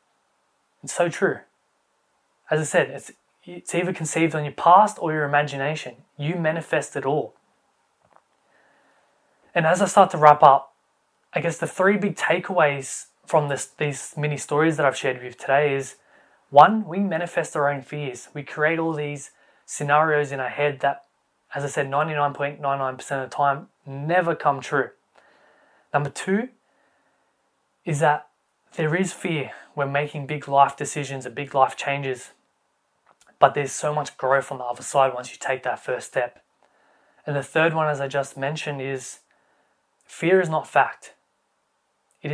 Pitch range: 140-160 Hz